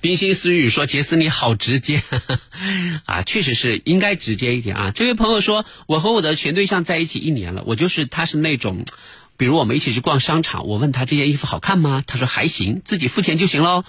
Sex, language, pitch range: male, Chinese, 120-160 Hz